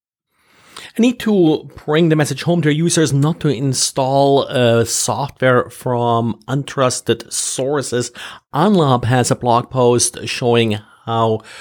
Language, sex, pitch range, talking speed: English, male, 115-140 Hz, 125 wpm